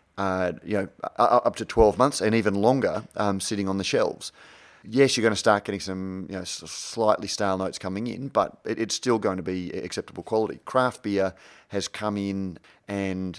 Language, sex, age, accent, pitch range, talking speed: English, male, 30-49, Australian, 95-110 Hz, 195 wpm